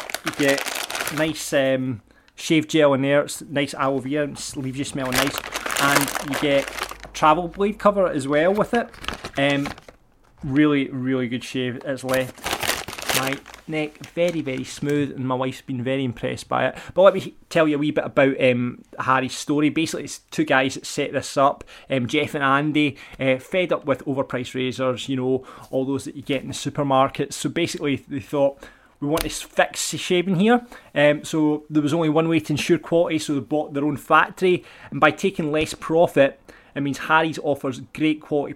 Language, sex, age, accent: English, male, 20-39, British